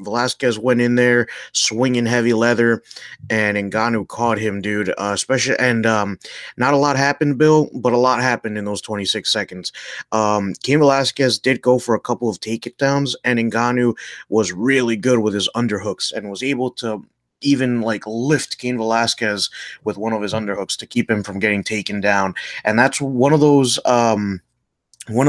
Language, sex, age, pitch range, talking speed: English, male, 20-39, 105-125 Hz, 185 wpm